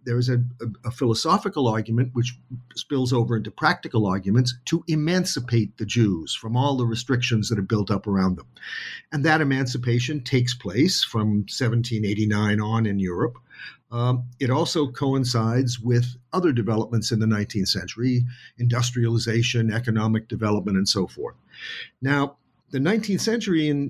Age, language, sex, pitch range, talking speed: 50-69, English, male, 115-140 Hz, 150 wpm